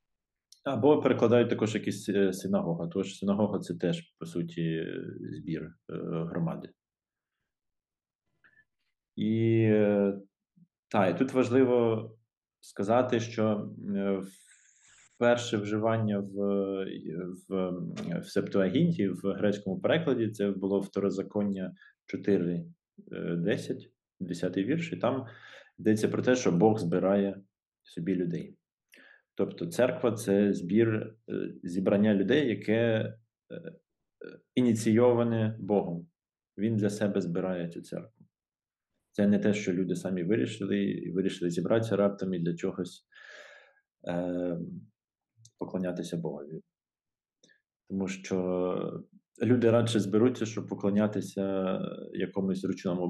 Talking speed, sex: 100 wpm, male